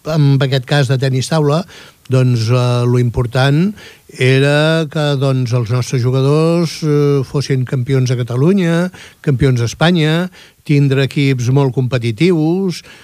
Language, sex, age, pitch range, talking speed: Italian, male, 60-79, 130-160 Hz, 125 wpm